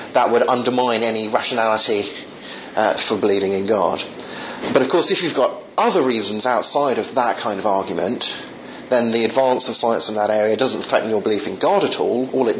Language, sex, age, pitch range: English, male, 30-49, 115-140 Hz